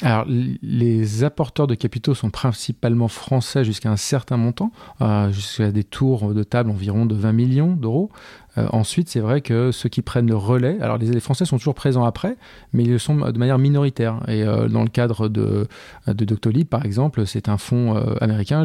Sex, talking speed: male, 195 wpm